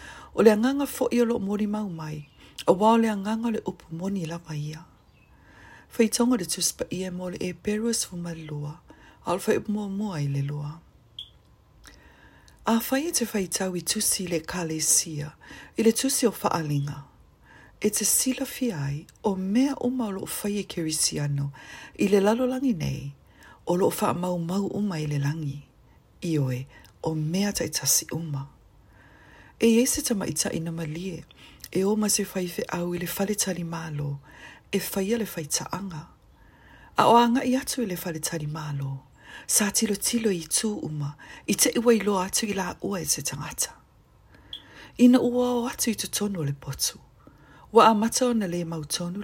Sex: female